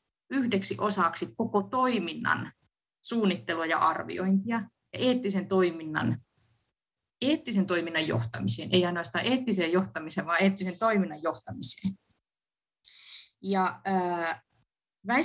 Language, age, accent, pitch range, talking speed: Finnish, 30-49, native, 155-200 Hz, 85 wpm